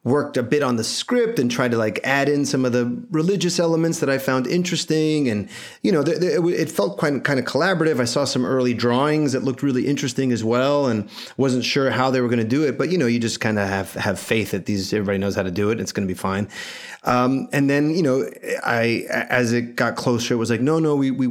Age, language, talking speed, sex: 30-49, English, 260 wpm, male